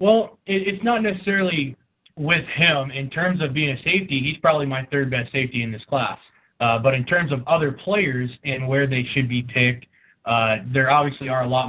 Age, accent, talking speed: 20-39, American, 205 wpm